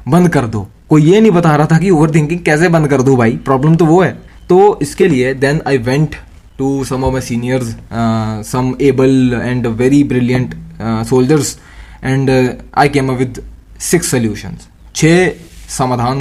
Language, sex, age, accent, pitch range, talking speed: Hindi, male, 20-39, native, 120-145 Hz, 165 wpm